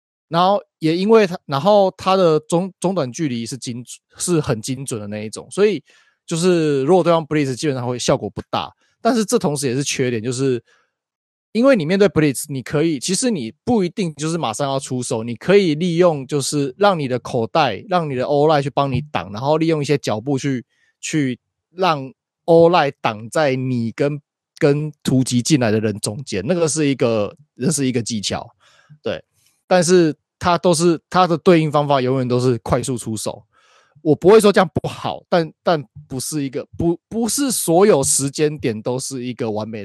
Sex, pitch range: male, 125-175 Hz